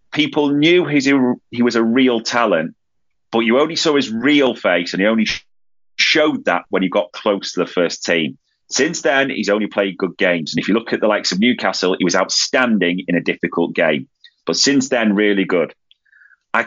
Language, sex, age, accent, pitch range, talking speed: English, male, 30-49, British, 100-140 Hz, 200 wpm